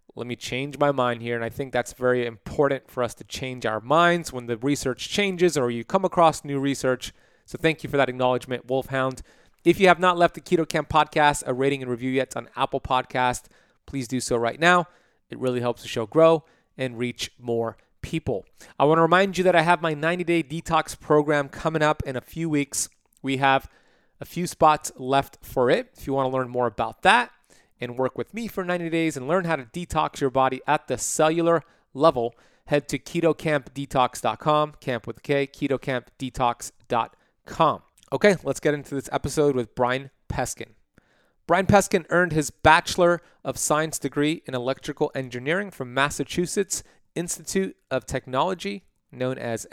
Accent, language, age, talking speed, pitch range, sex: American, English, 30-49, 185 wpm, 125-165 Hz, male